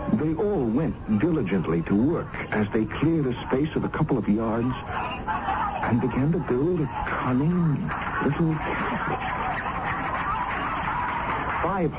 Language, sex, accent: English, male, American